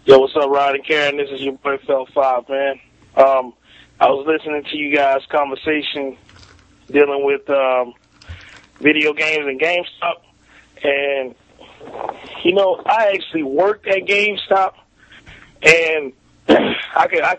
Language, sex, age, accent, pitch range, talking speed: English, male, 20-39, American, 135-165 Hz, 140 wpm